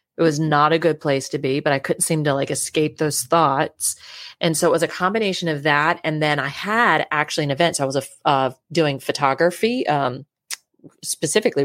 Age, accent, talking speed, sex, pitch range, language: 30-49, American, 210 wpm, female, 145-180 Hz, English